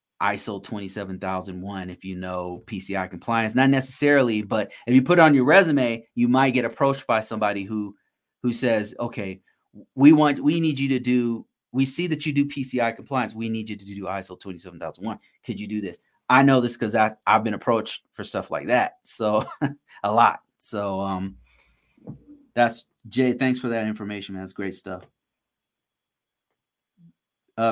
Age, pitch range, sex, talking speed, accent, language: 30-49, 105-125 Hz, male, 170 wpm, American, English